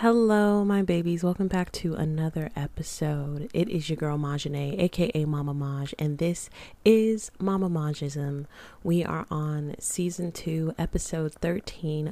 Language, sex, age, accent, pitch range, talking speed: English, female, 20-39, American, 145-175 Hz, 140 wpm